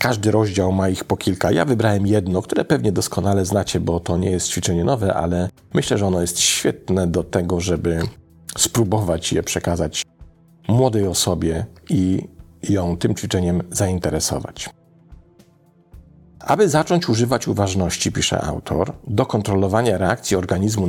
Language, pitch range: Polish, 85-110 Hz